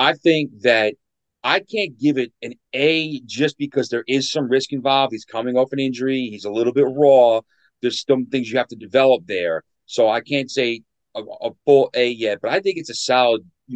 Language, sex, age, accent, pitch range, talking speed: English, male, 30-49, American, 110-140 Hz, 220 wpm